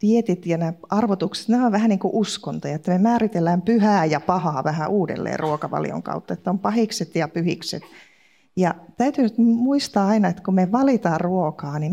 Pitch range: 175-225 Hz